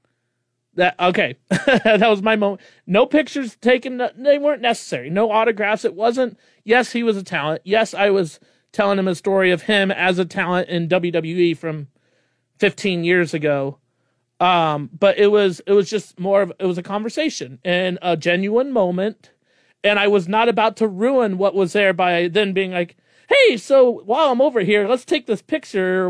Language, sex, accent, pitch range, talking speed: English, male, American, 175-220 Hz, 185 wpm